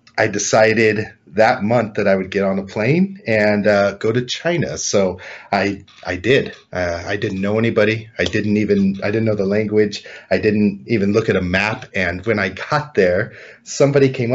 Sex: male